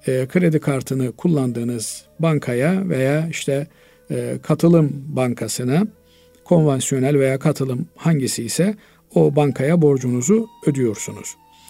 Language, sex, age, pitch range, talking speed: Turkish, male, 50-69, 135-190 Hz, 95 wpm